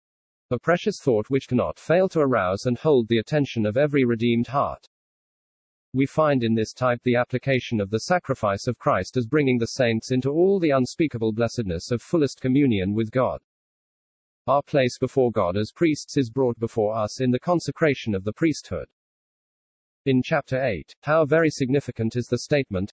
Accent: British